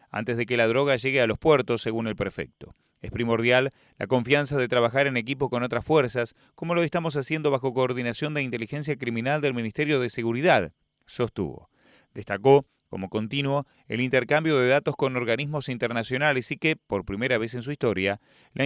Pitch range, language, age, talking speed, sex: 115-145 Hz, Spanish, 30-49, 180 wpm, male